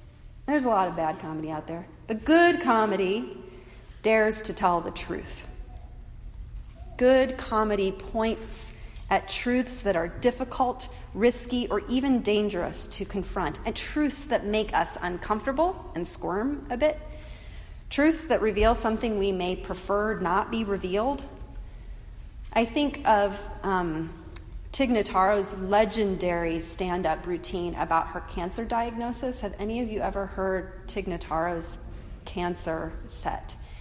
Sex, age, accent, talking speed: female, 40-59, American, 125 wpm